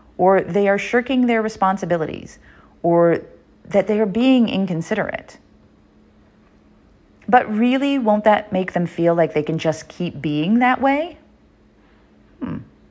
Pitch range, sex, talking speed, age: 165-240 Hz, female, 130 wpm, 30-49